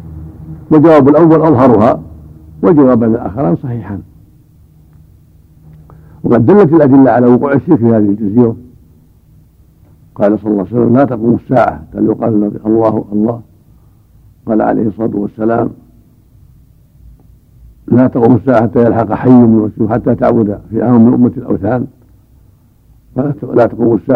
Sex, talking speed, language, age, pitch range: male, 115 wpm, Arabic, 70-89, 100-125 Hz